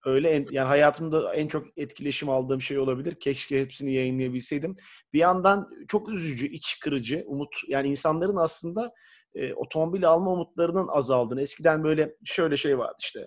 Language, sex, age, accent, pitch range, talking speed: Turkish, male, 40-59, native, 135-190 Hz, 155 wpm